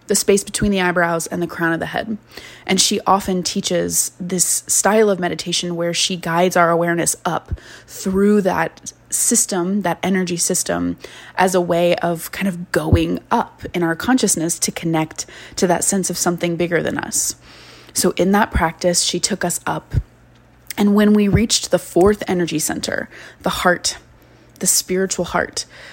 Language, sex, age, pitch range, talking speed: English, female, 20-39, 170-190 Hz, 170 wpm